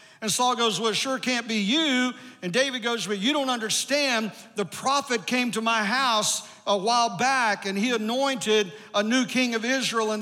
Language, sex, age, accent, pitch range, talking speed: English, male, 50-69, American, 220-265 Hz, 200 wpm